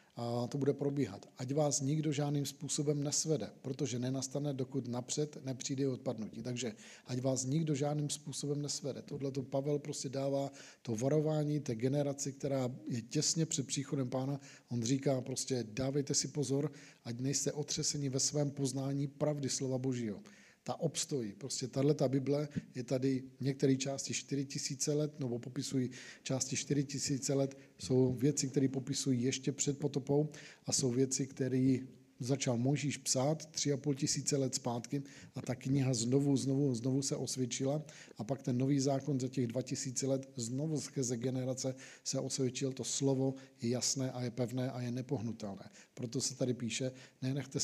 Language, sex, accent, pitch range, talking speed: Czech, male, native, 130-145 Hz, 160 wpm